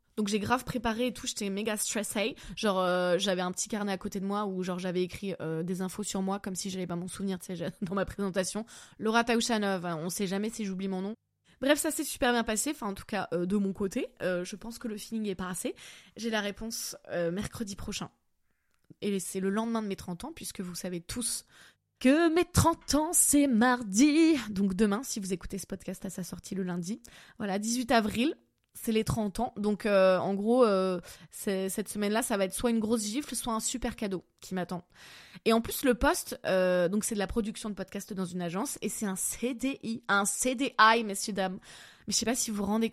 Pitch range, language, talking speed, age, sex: 190-230 Hz, French, 235 wpm, 20-39, female